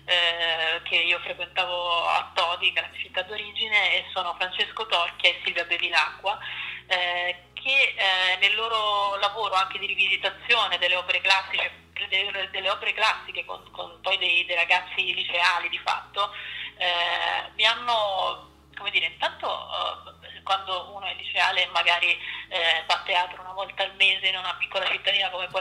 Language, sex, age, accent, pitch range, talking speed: Italian, female, 20-39, native, 175-195 Hz, 150 wpm